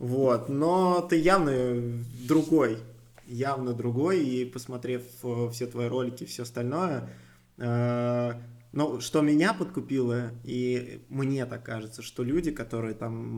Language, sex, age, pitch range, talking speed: Russian, male, 20-39, 115-130 Hz, 130 wpm